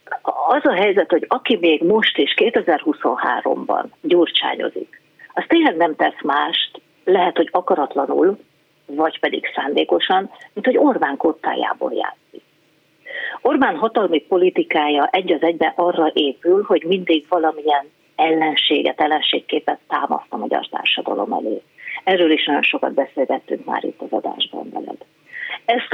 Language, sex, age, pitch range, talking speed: Hungarian, female, 40-59, 155-220 Hz, 125 wpm